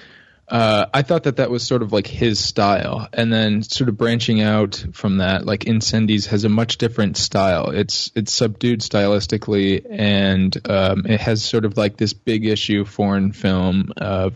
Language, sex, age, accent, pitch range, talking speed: English, male, 20-39, American, 100-120 Hz, 180 wpm